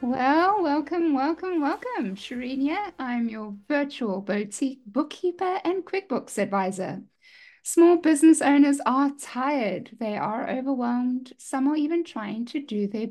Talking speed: 130 wpm